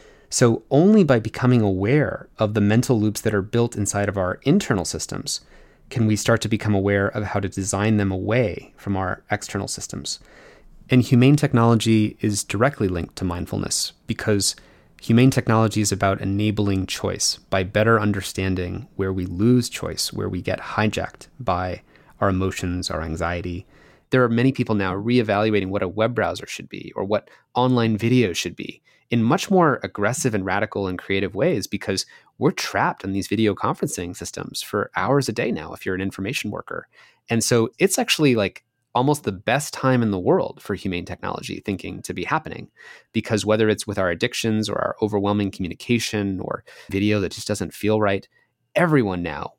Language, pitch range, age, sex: English, 95-120 Hz, 30-49, male